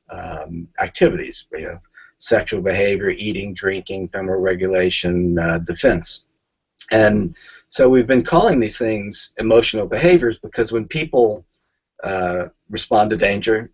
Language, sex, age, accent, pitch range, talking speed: English, male, 50-69, American, 90-115 Hz, 120 wpm